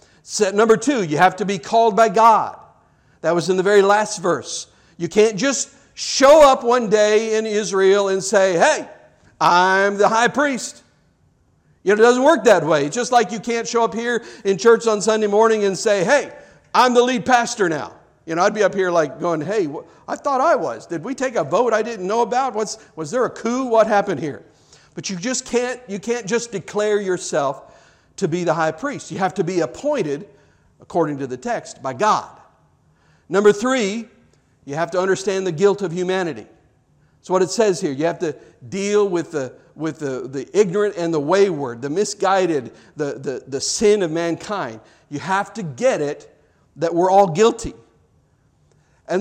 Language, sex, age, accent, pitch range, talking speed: English, male, 50-69, American, 170-225 Hz, 195 wpm